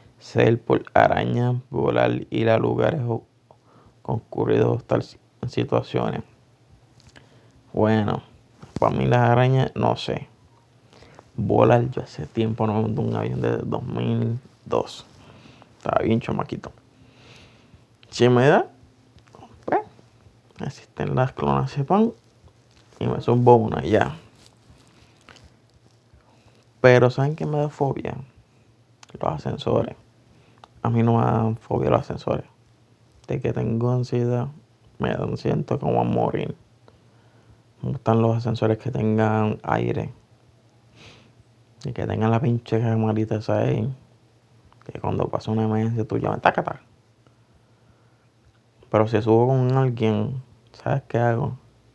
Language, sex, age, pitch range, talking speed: Spanish, male, 20-39, 110-125 Hz, 120 wpm